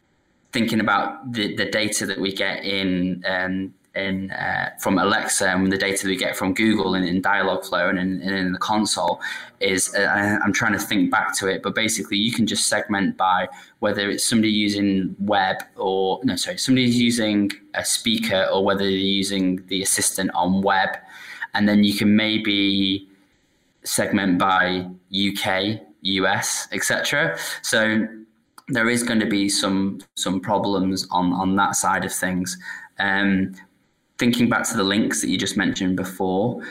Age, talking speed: 10-29, 170 wpm